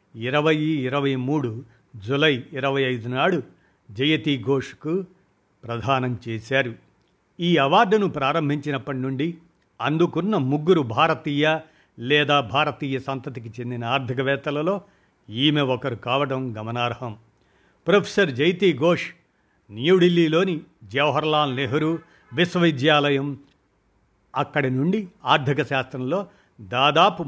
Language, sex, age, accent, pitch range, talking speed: Telugu, male, 50-69, native, 130-165 Hz, 85 wpm